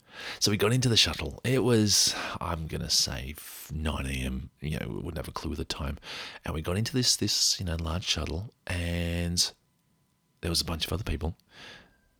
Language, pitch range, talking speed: English, 80-110 Hz, 205 wpm